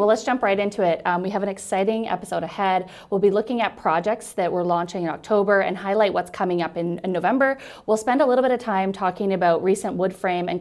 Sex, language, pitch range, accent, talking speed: female, English, 175-205 Hz, American, 250 wpm